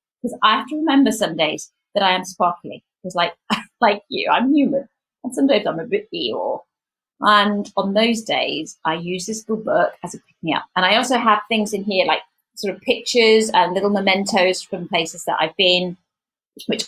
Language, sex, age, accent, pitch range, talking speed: English, female, 30-49, British, 170-220 Hz, 205 wpm